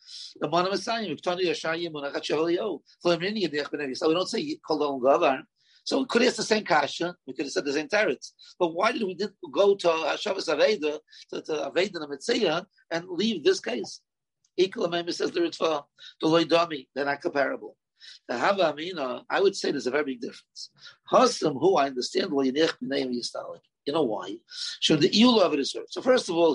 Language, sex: English, male